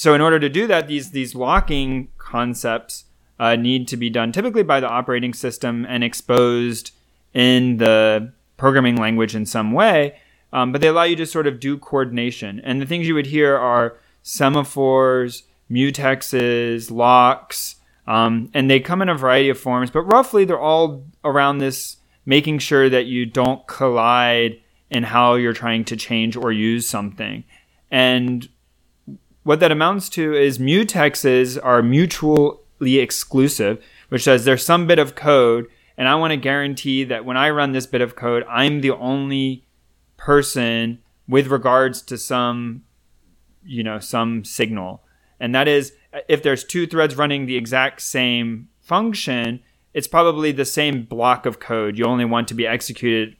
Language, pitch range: English, 115-140 Hz